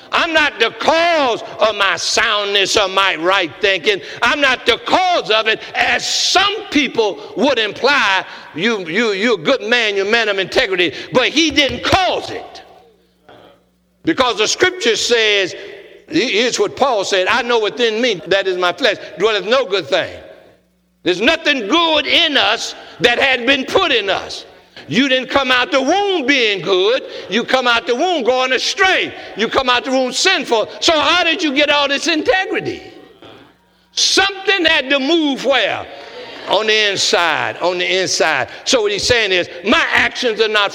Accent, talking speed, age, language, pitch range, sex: American, 170 wpm, 60-79, English, 230-370 Hz, male